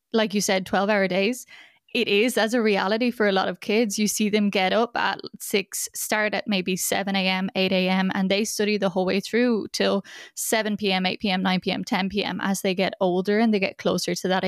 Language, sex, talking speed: English, female, 205 wpm